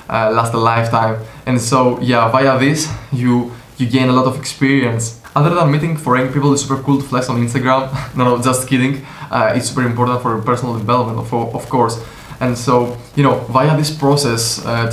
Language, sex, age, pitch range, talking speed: Greek, male, 20-39, 115-130 Hz, 205 wpm